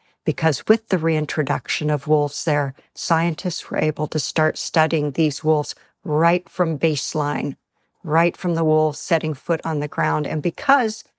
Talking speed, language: 155 wpm, English